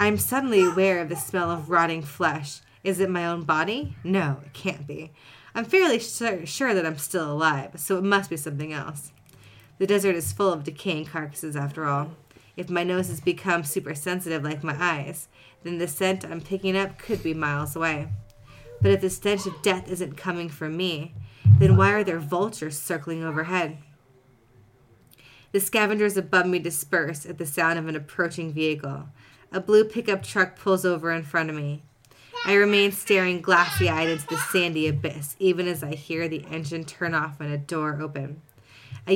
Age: 20-39